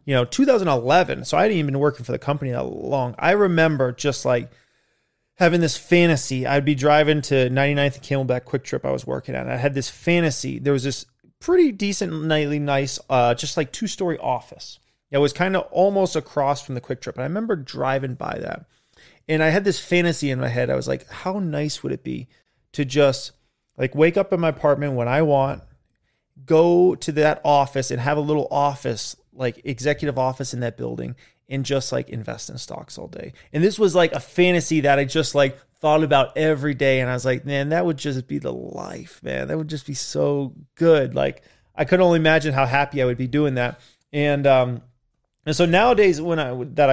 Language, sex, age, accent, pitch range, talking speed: English, male, 30-49, American, 130-155 Hz, 215 wpm